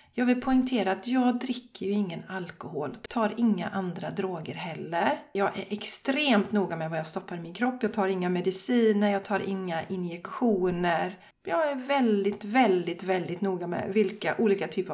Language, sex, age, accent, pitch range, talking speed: Swedish, female, 30-49, native, 190-245 Hz, 175 wpm